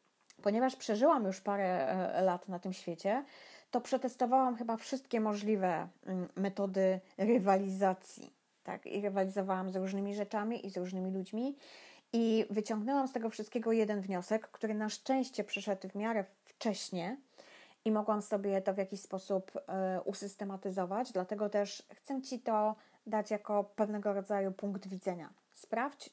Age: 30-49